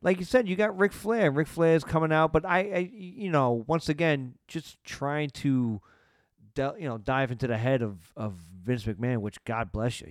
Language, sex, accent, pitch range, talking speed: English, male, American, 115-150 Hz, 220 wpm